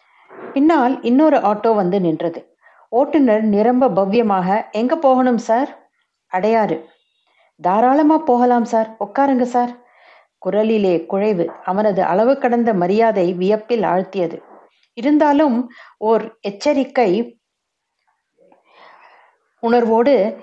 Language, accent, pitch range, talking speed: Tamil, native, 195-245 Hz, 80 wpm